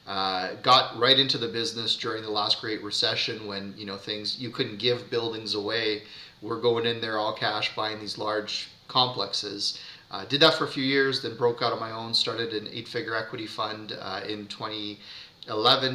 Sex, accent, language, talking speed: male, American, English, 200 wpm